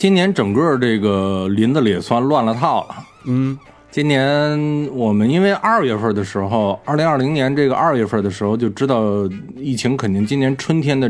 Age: 20-39